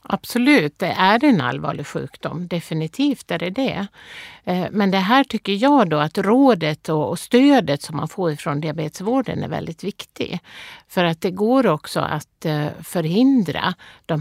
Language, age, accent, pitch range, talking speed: Swedish, 50-69, native, 160-210 Hz, 150 wpm